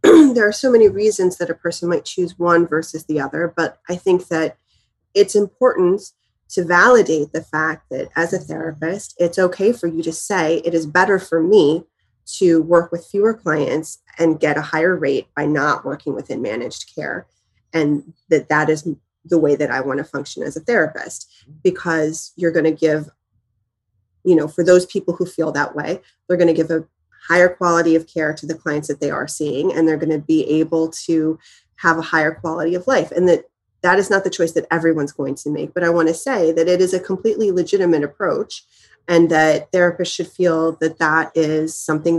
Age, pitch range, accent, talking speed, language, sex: 30-49, 155-180 Hz, American, 205 wpm, English, female